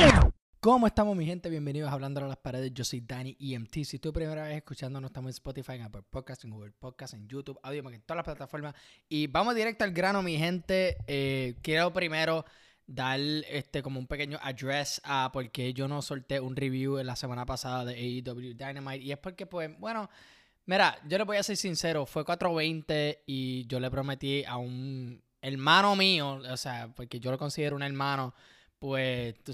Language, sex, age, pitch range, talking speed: Spanish, male, 20-39, 130-160 Hz, 195 wpm